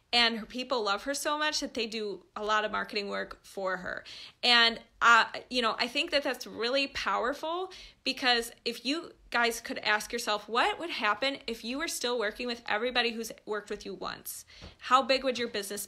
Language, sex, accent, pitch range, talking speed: English, female, American, 220-255 Hz, 205 wpm